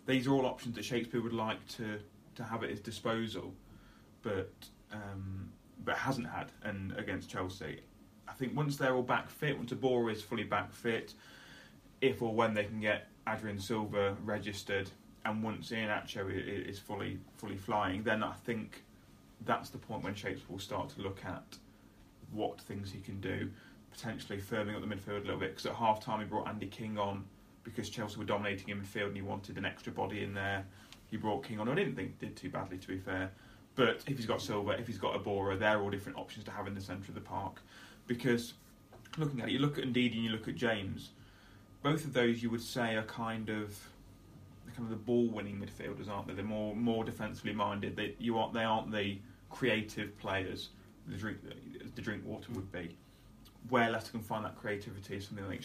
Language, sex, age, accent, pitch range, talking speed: English, male, 30-49, British, 100-115 Hz, 210 wpm